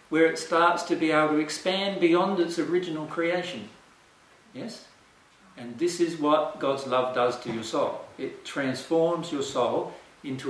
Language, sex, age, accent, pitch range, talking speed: English, male, 50-69, Australian, 135-175 Hz, 160 wpm